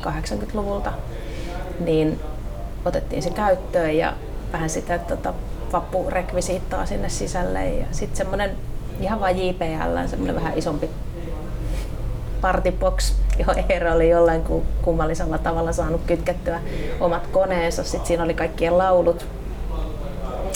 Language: Finnish